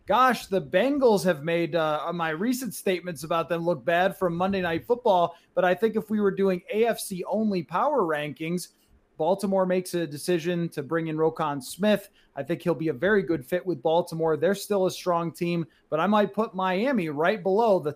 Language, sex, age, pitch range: English, male, 30-49, 170-210 Hz